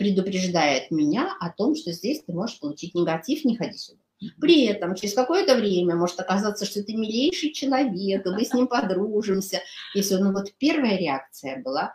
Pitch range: 165-250 Hz